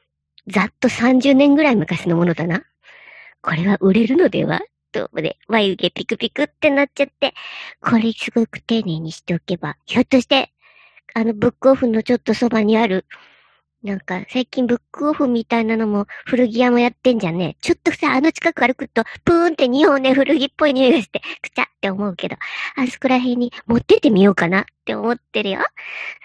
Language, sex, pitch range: Japanese, male, 200-280 Hz